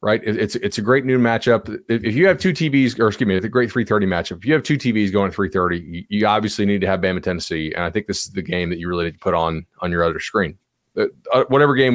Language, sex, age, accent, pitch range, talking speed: English, male, 30-49, American, 95-135 Hz, 280 wpm